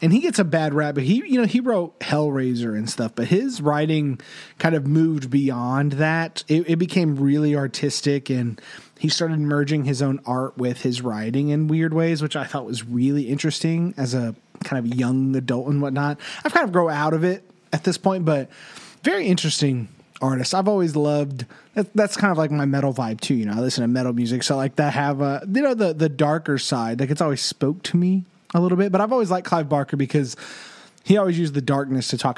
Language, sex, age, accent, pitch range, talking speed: English, male, 30-49, American, 130-175 Hz, 225 wpm